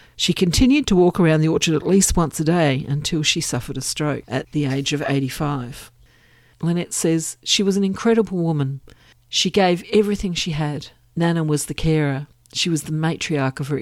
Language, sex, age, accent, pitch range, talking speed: English, female, 50-69, Australian, 135-165 Hz, 190 wpm